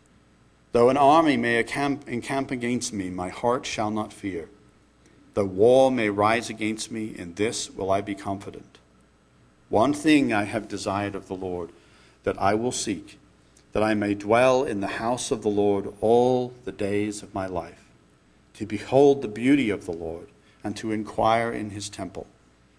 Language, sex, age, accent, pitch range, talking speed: English, male, 50-69, American, 95-120 Hz, 170 wpm